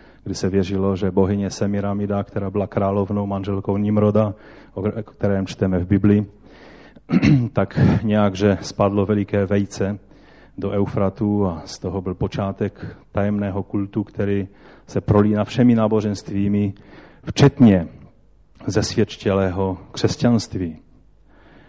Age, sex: 30-49, male